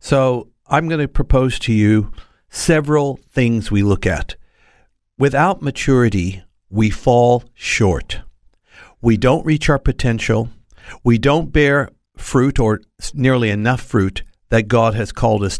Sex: male